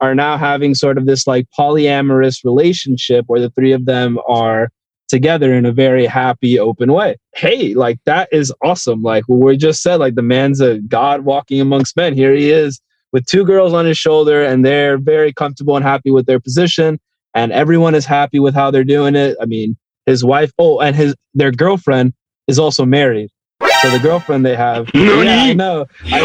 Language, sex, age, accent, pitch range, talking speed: English, male, 20-39, American, 120-155 Hz, 200 wpm